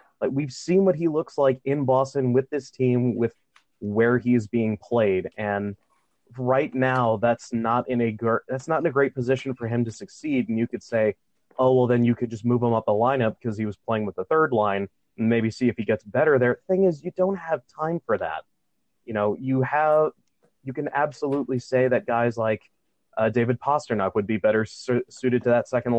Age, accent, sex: 30-49, American, male